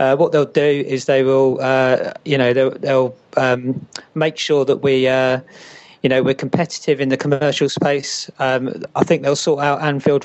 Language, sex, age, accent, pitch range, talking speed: English, male, 40-59, British, 130-145 Hz, 195 wpm